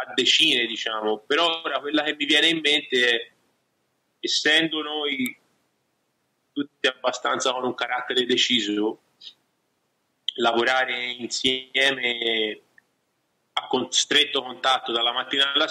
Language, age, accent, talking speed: Italian, 30-49, native, 105 wpm